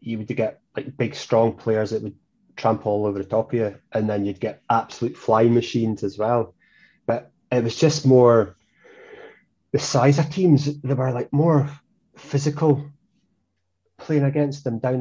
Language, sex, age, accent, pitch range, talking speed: English, male, 20-39, British, 110-130 Hz, 170 wpm